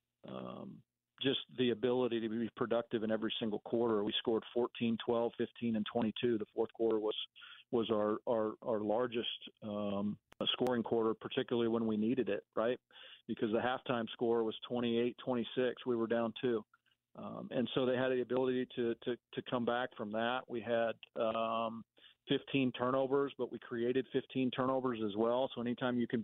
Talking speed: 175 wpm